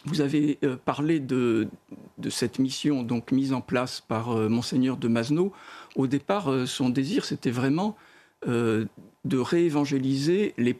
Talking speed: 150 wpm